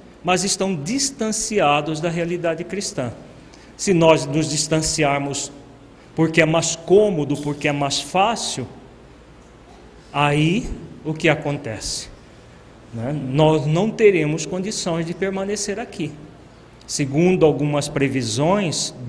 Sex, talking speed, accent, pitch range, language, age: male, 105 wpm, Brazilian, 140-165 Hz, Portuguese, 40-59